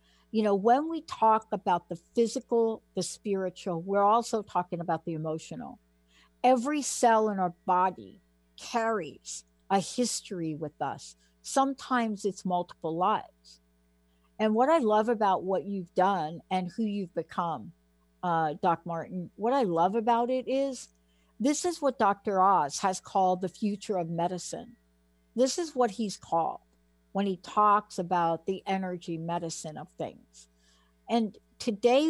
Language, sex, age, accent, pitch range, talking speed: English, female, 60-79, American, 155-225 Hz, 145 wpm